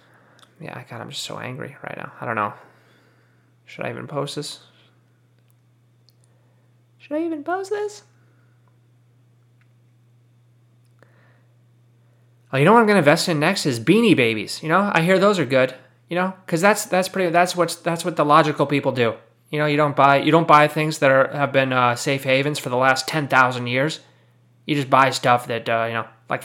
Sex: male